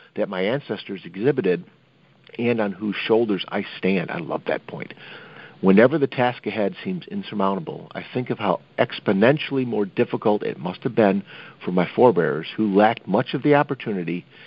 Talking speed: 165 wpm